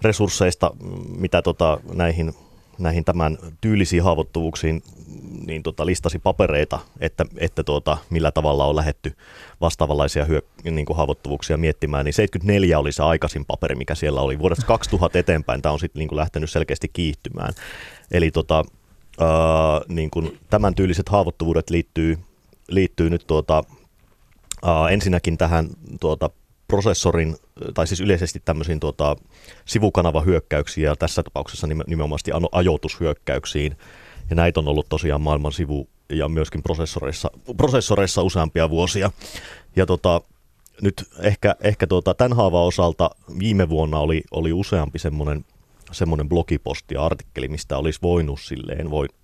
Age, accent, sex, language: 30-49, native, male, Finnish